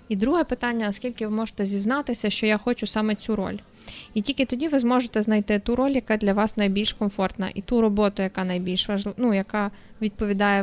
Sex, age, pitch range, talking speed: female, 20-39, 200-230 Hz, 200 wpm